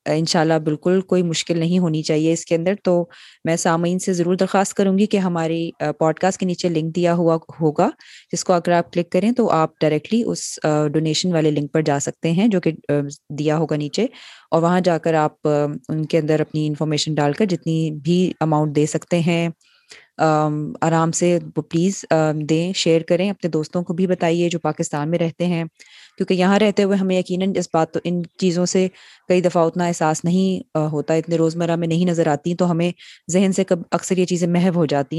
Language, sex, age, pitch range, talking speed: Urdu, female, 20-39, 155-180 Hz, 205 wpm